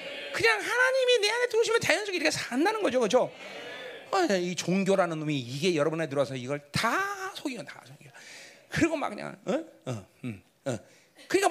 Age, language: 40-59, Korean